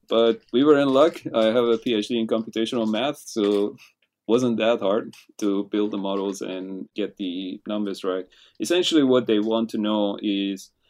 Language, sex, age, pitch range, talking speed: English, male, 30-49, 95-110 Hz, 180 wpm